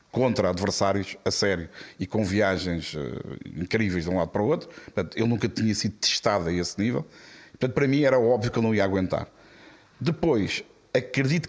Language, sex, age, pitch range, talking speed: Portuguese, male, 50-69, 100-130 Hz, 190 wpm